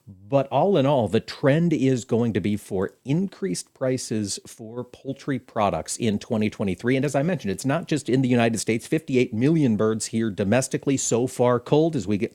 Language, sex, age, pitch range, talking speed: English, male, 50-69, 110-135 Hz, 195 wpm